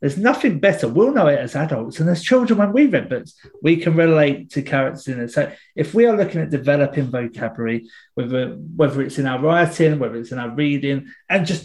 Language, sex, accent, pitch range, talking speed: English, male, British, 135-185 Hz, 220 wpm